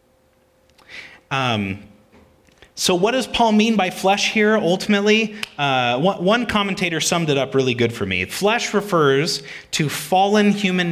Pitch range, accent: 125-185 Hz, American